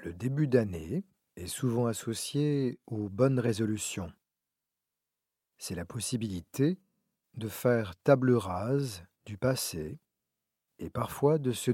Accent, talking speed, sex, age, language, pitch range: French, 110 wpm, male, 40-59, French, 110-135 Hz